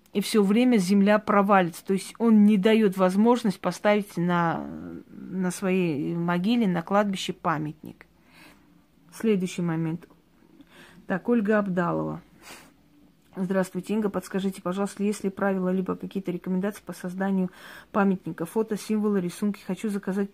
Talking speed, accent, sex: 125 wpm, native, female